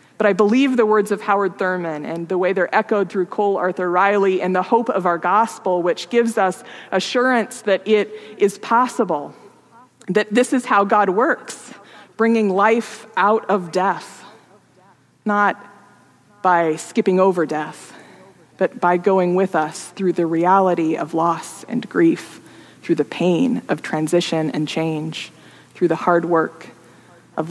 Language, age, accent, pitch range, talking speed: English, 20-39, American, 170-210 Hz, 155 wpm